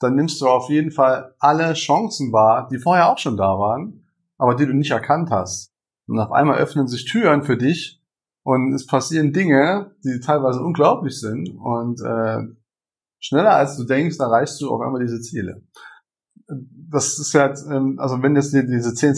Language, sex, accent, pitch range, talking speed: German, male, German, 115-145 Hz, 185 wpm